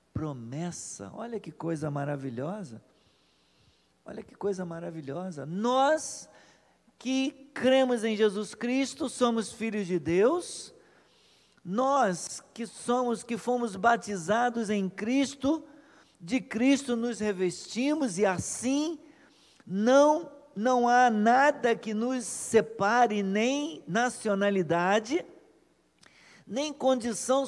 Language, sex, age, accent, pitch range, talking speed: Portuguese, male, 50-69, Brazilian, 205-275 Hz, 95 wpm